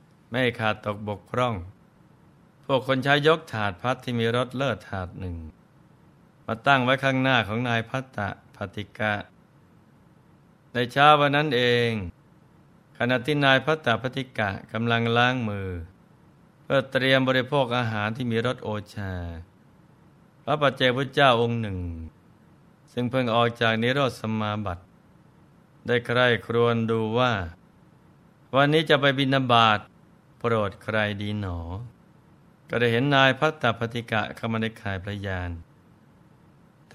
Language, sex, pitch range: Thai, male, 110-145 Hz